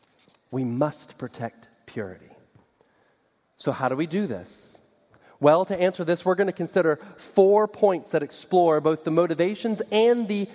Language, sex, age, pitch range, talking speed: English, male, 40-59, 150-210 Hz, 155 wpm